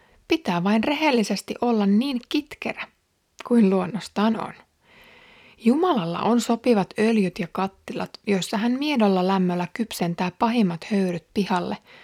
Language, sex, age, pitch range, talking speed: Finnish, female, 30-49, 185-245 Hz, 115 wpm